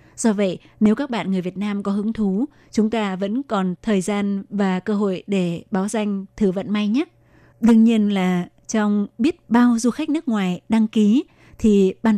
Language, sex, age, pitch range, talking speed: Vietnamese, female, 20-39, 190-220 Hz, 200 wpm